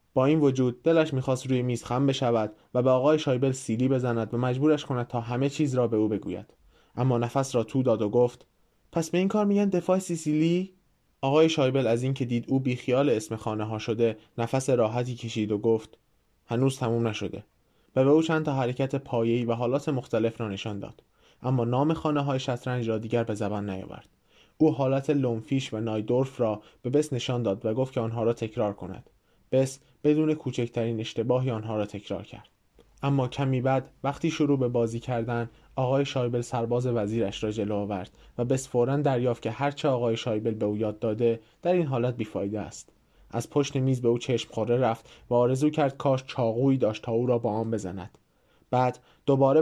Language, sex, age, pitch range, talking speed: Persian, male, 20-39, 115-135 Hz, 190 wpm